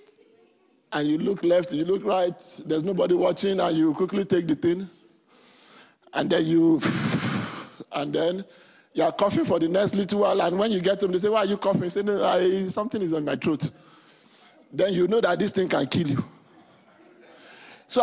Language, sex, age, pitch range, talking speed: English, male, 50-69, 180-240 Hz, 195 wpm